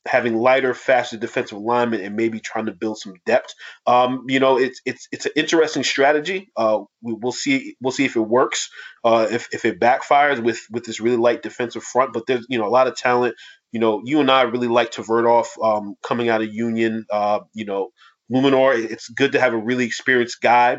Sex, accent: male, American